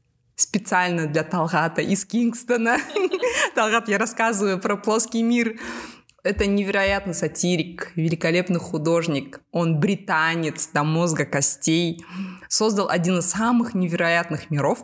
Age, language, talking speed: 20-39, Russian, 110 wpm